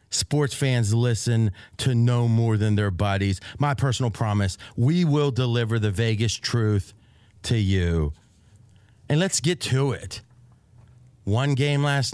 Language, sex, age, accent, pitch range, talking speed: English, male, 40-59, American, 110-140 Hz, 140 wpm